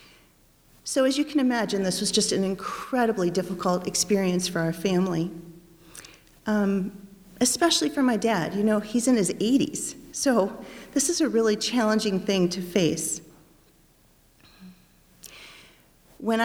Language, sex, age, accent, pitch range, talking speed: English, female, 40-59, American, 185-230 Hz, 130 wpm